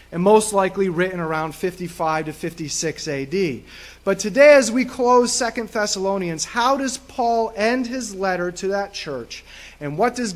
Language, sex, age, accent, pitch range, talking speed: English, male, 30-49, American, 165-220 Hz, 160 wpm